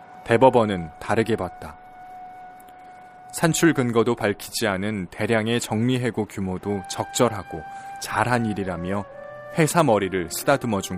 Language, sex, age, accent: Korean, male, 20-39, native